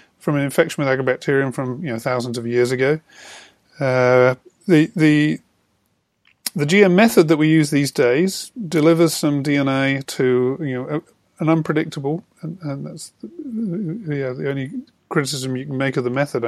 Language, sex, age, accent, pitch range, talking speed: English, male, 30-49, British, 130-170 Hz, 170 wpm